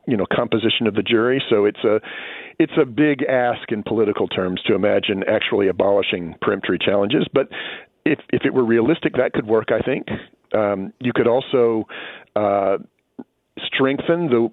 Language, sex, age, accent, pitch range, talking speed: English, male, 50-69, American, 105-130 Hz, 165 wpm